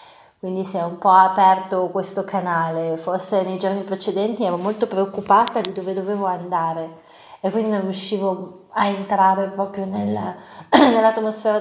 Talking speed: 140 wpm